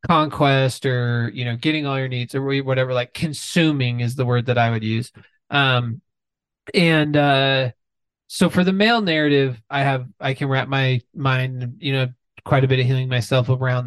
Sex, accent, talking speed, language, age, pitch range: male, American, 185 wpm, English, 20-39, 125-155 Hz